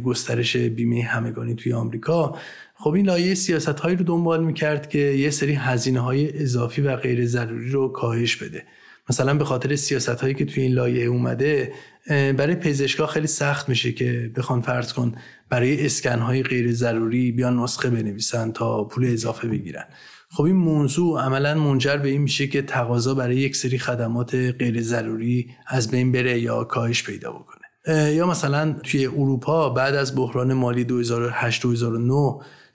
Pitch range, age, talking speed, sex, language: 120-145 Hz, 30-49, 160 wpm, male, Persian